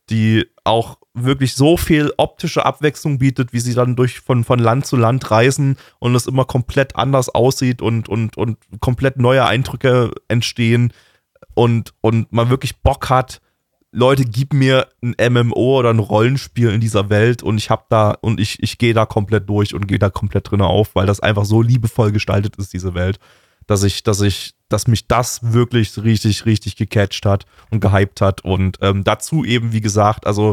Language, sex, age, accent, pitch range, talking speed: German, male, 20-39, German, 105-130 Hz, 190 wpm